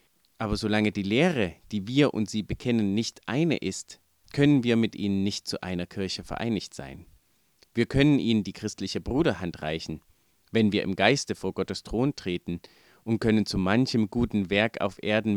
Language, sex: German, male